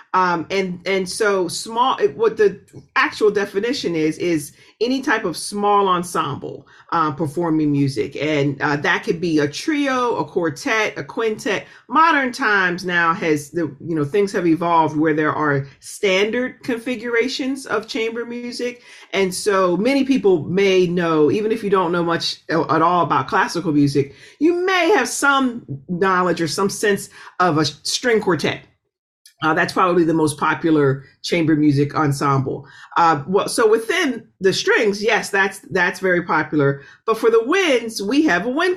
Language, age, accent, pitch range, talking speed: English, 40-59, American, 155-230 Hz, 165 wpm